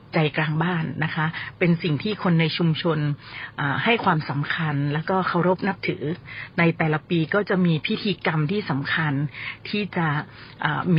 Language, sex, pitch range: Thai, female, 150-185 Hz